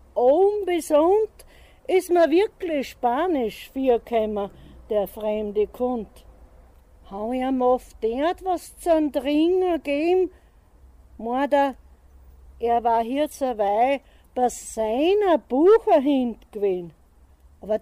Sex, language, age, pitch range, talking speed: female, German, 60-79, 220-320 Hz, 100 wpm